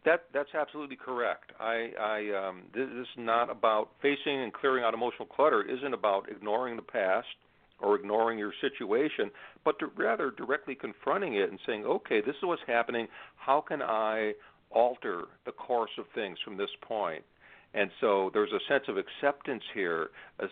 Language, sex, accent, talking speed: English, male, American, 175 wpm